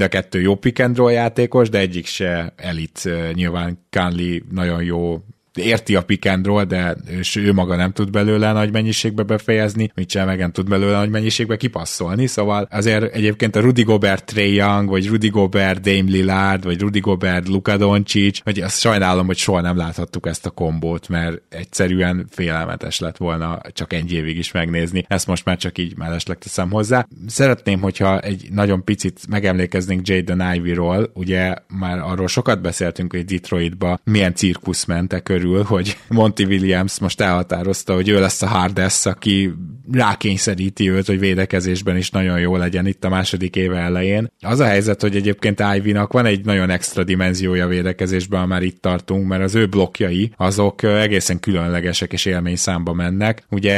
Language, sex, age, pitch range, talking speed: Hungarian, male, 20-39, 90-105 Hz, 165 wpm